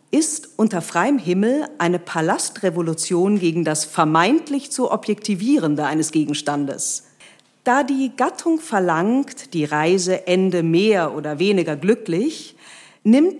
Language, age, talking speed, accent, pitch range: German, 40-59, 110 wpm, German, 160-230 Hz